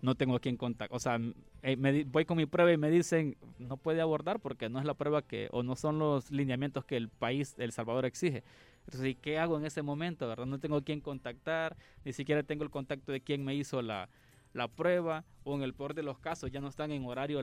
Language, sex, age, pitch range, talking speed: Spanish, male, 20-39, 130-155 Hz, 250 wpm